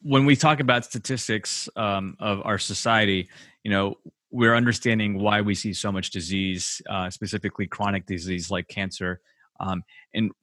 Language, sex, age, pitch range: English, male, 30-49, 100-120 Hz